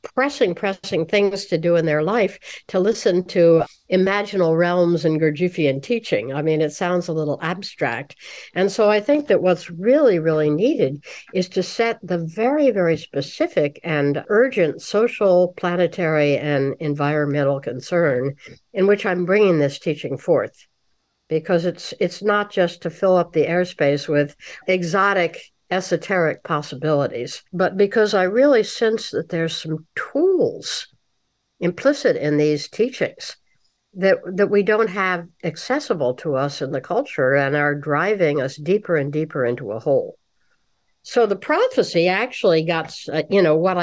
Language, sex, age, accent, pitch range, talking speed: English, female, 60-79, American, 155-205 Hz, 150 wpm